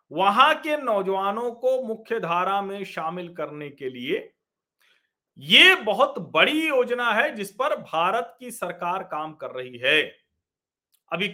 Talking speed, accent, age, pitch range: 140 wpm, native, 40-59, 175-260 Hz